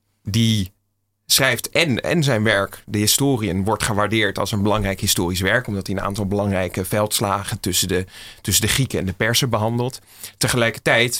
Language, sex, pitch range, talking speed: Dutch, male, 100-110 Hz, 165 wpm